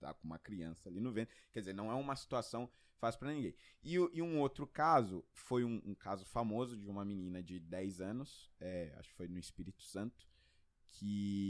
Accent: Brazilian